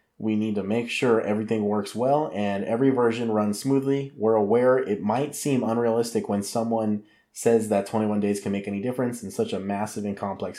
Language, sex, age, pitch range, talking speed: English, male, 20-39, 105-125 Hz, 200 wpm